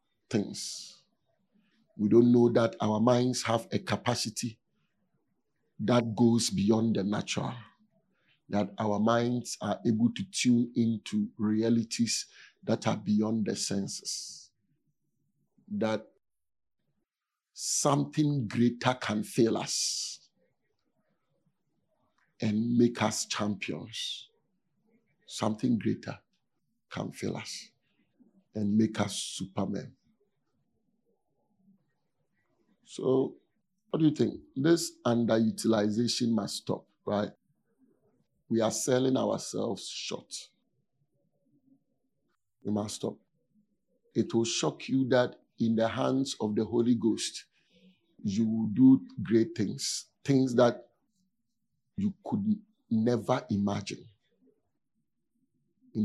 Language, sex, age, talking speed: English, male, 50-69, 95 wpm